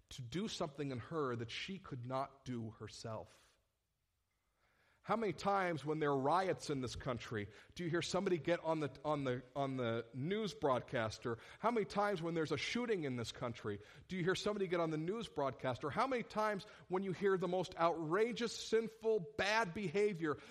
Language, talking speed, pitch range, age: English, 185 wpm, 130-210 Hz, 50-69